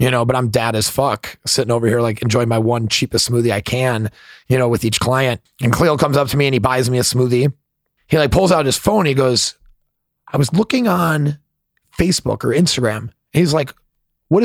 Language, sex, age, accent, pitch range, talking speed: English, male, 30-49, American, 115-140 Hz, 220 wpm